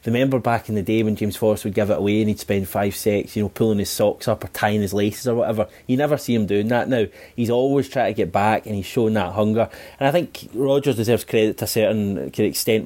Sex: male